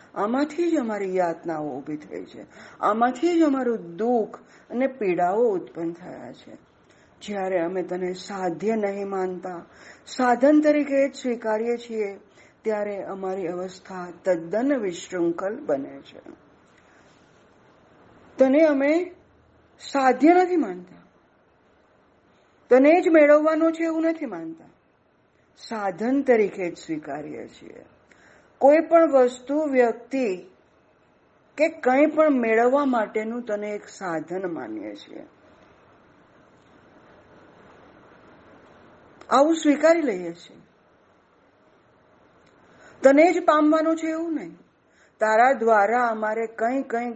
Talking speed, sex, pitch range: 30 wpm, female, 190-290 Hz